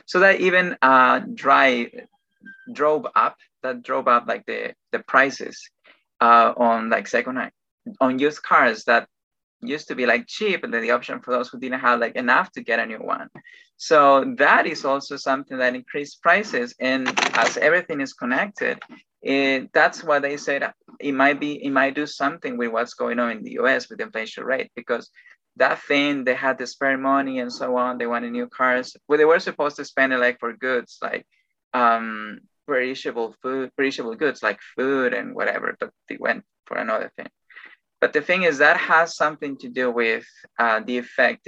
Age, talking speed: 20-39, 195 wpm